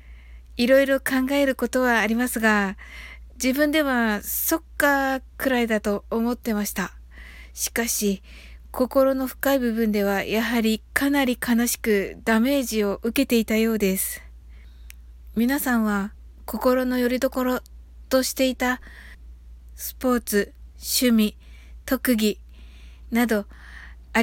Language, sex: Japanese, female